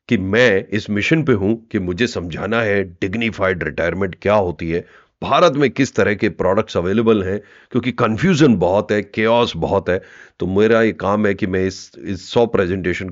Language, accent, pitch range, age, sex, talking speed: Hindi, native, 90-115 Hz, 40-59, male, 190 wpm